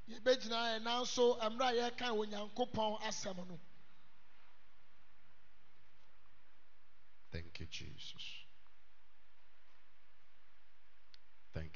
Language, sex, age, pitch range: English, male, 50-69, 115-190 Hz